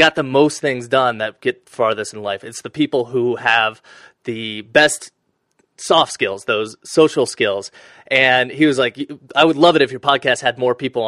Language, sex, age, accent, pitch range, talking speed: English, male, 30-49, American, 120-160 Hz, 195 wpm